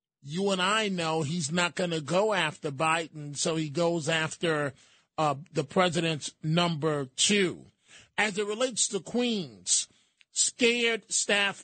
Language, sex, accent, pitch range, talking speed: English, male, American, 160-190 Hz, 140 wpm